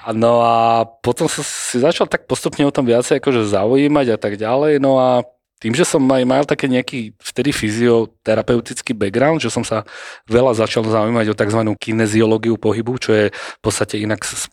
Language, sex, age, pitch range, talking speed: Slovak, male, 30-49, 105-120 Hz, 180 wpm